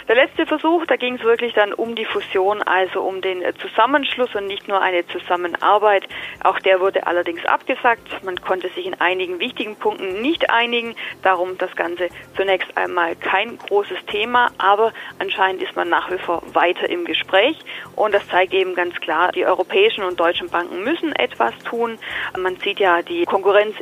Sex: female